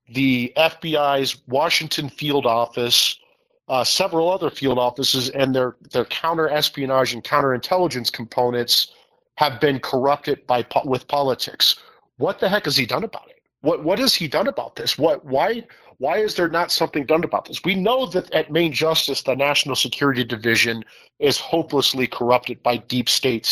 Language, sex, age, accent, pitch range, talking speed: English, male, 40-59, American, 130-160 Hz, 170 wpm